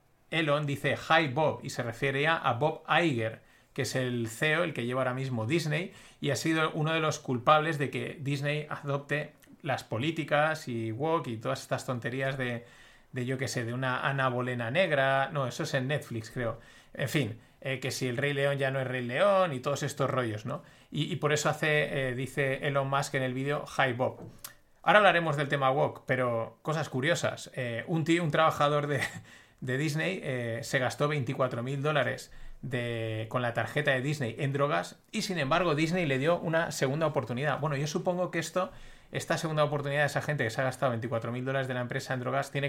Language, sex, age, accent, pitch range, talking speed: Spanish, male, 30-49, Spanish, 125-150 Hz, 210 wpm